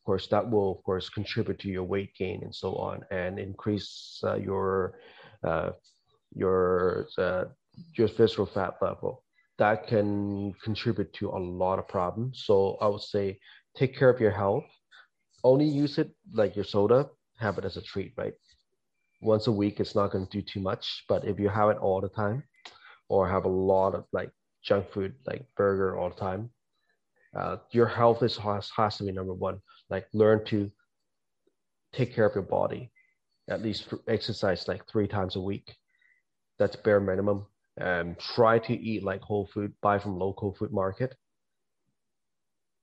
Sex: male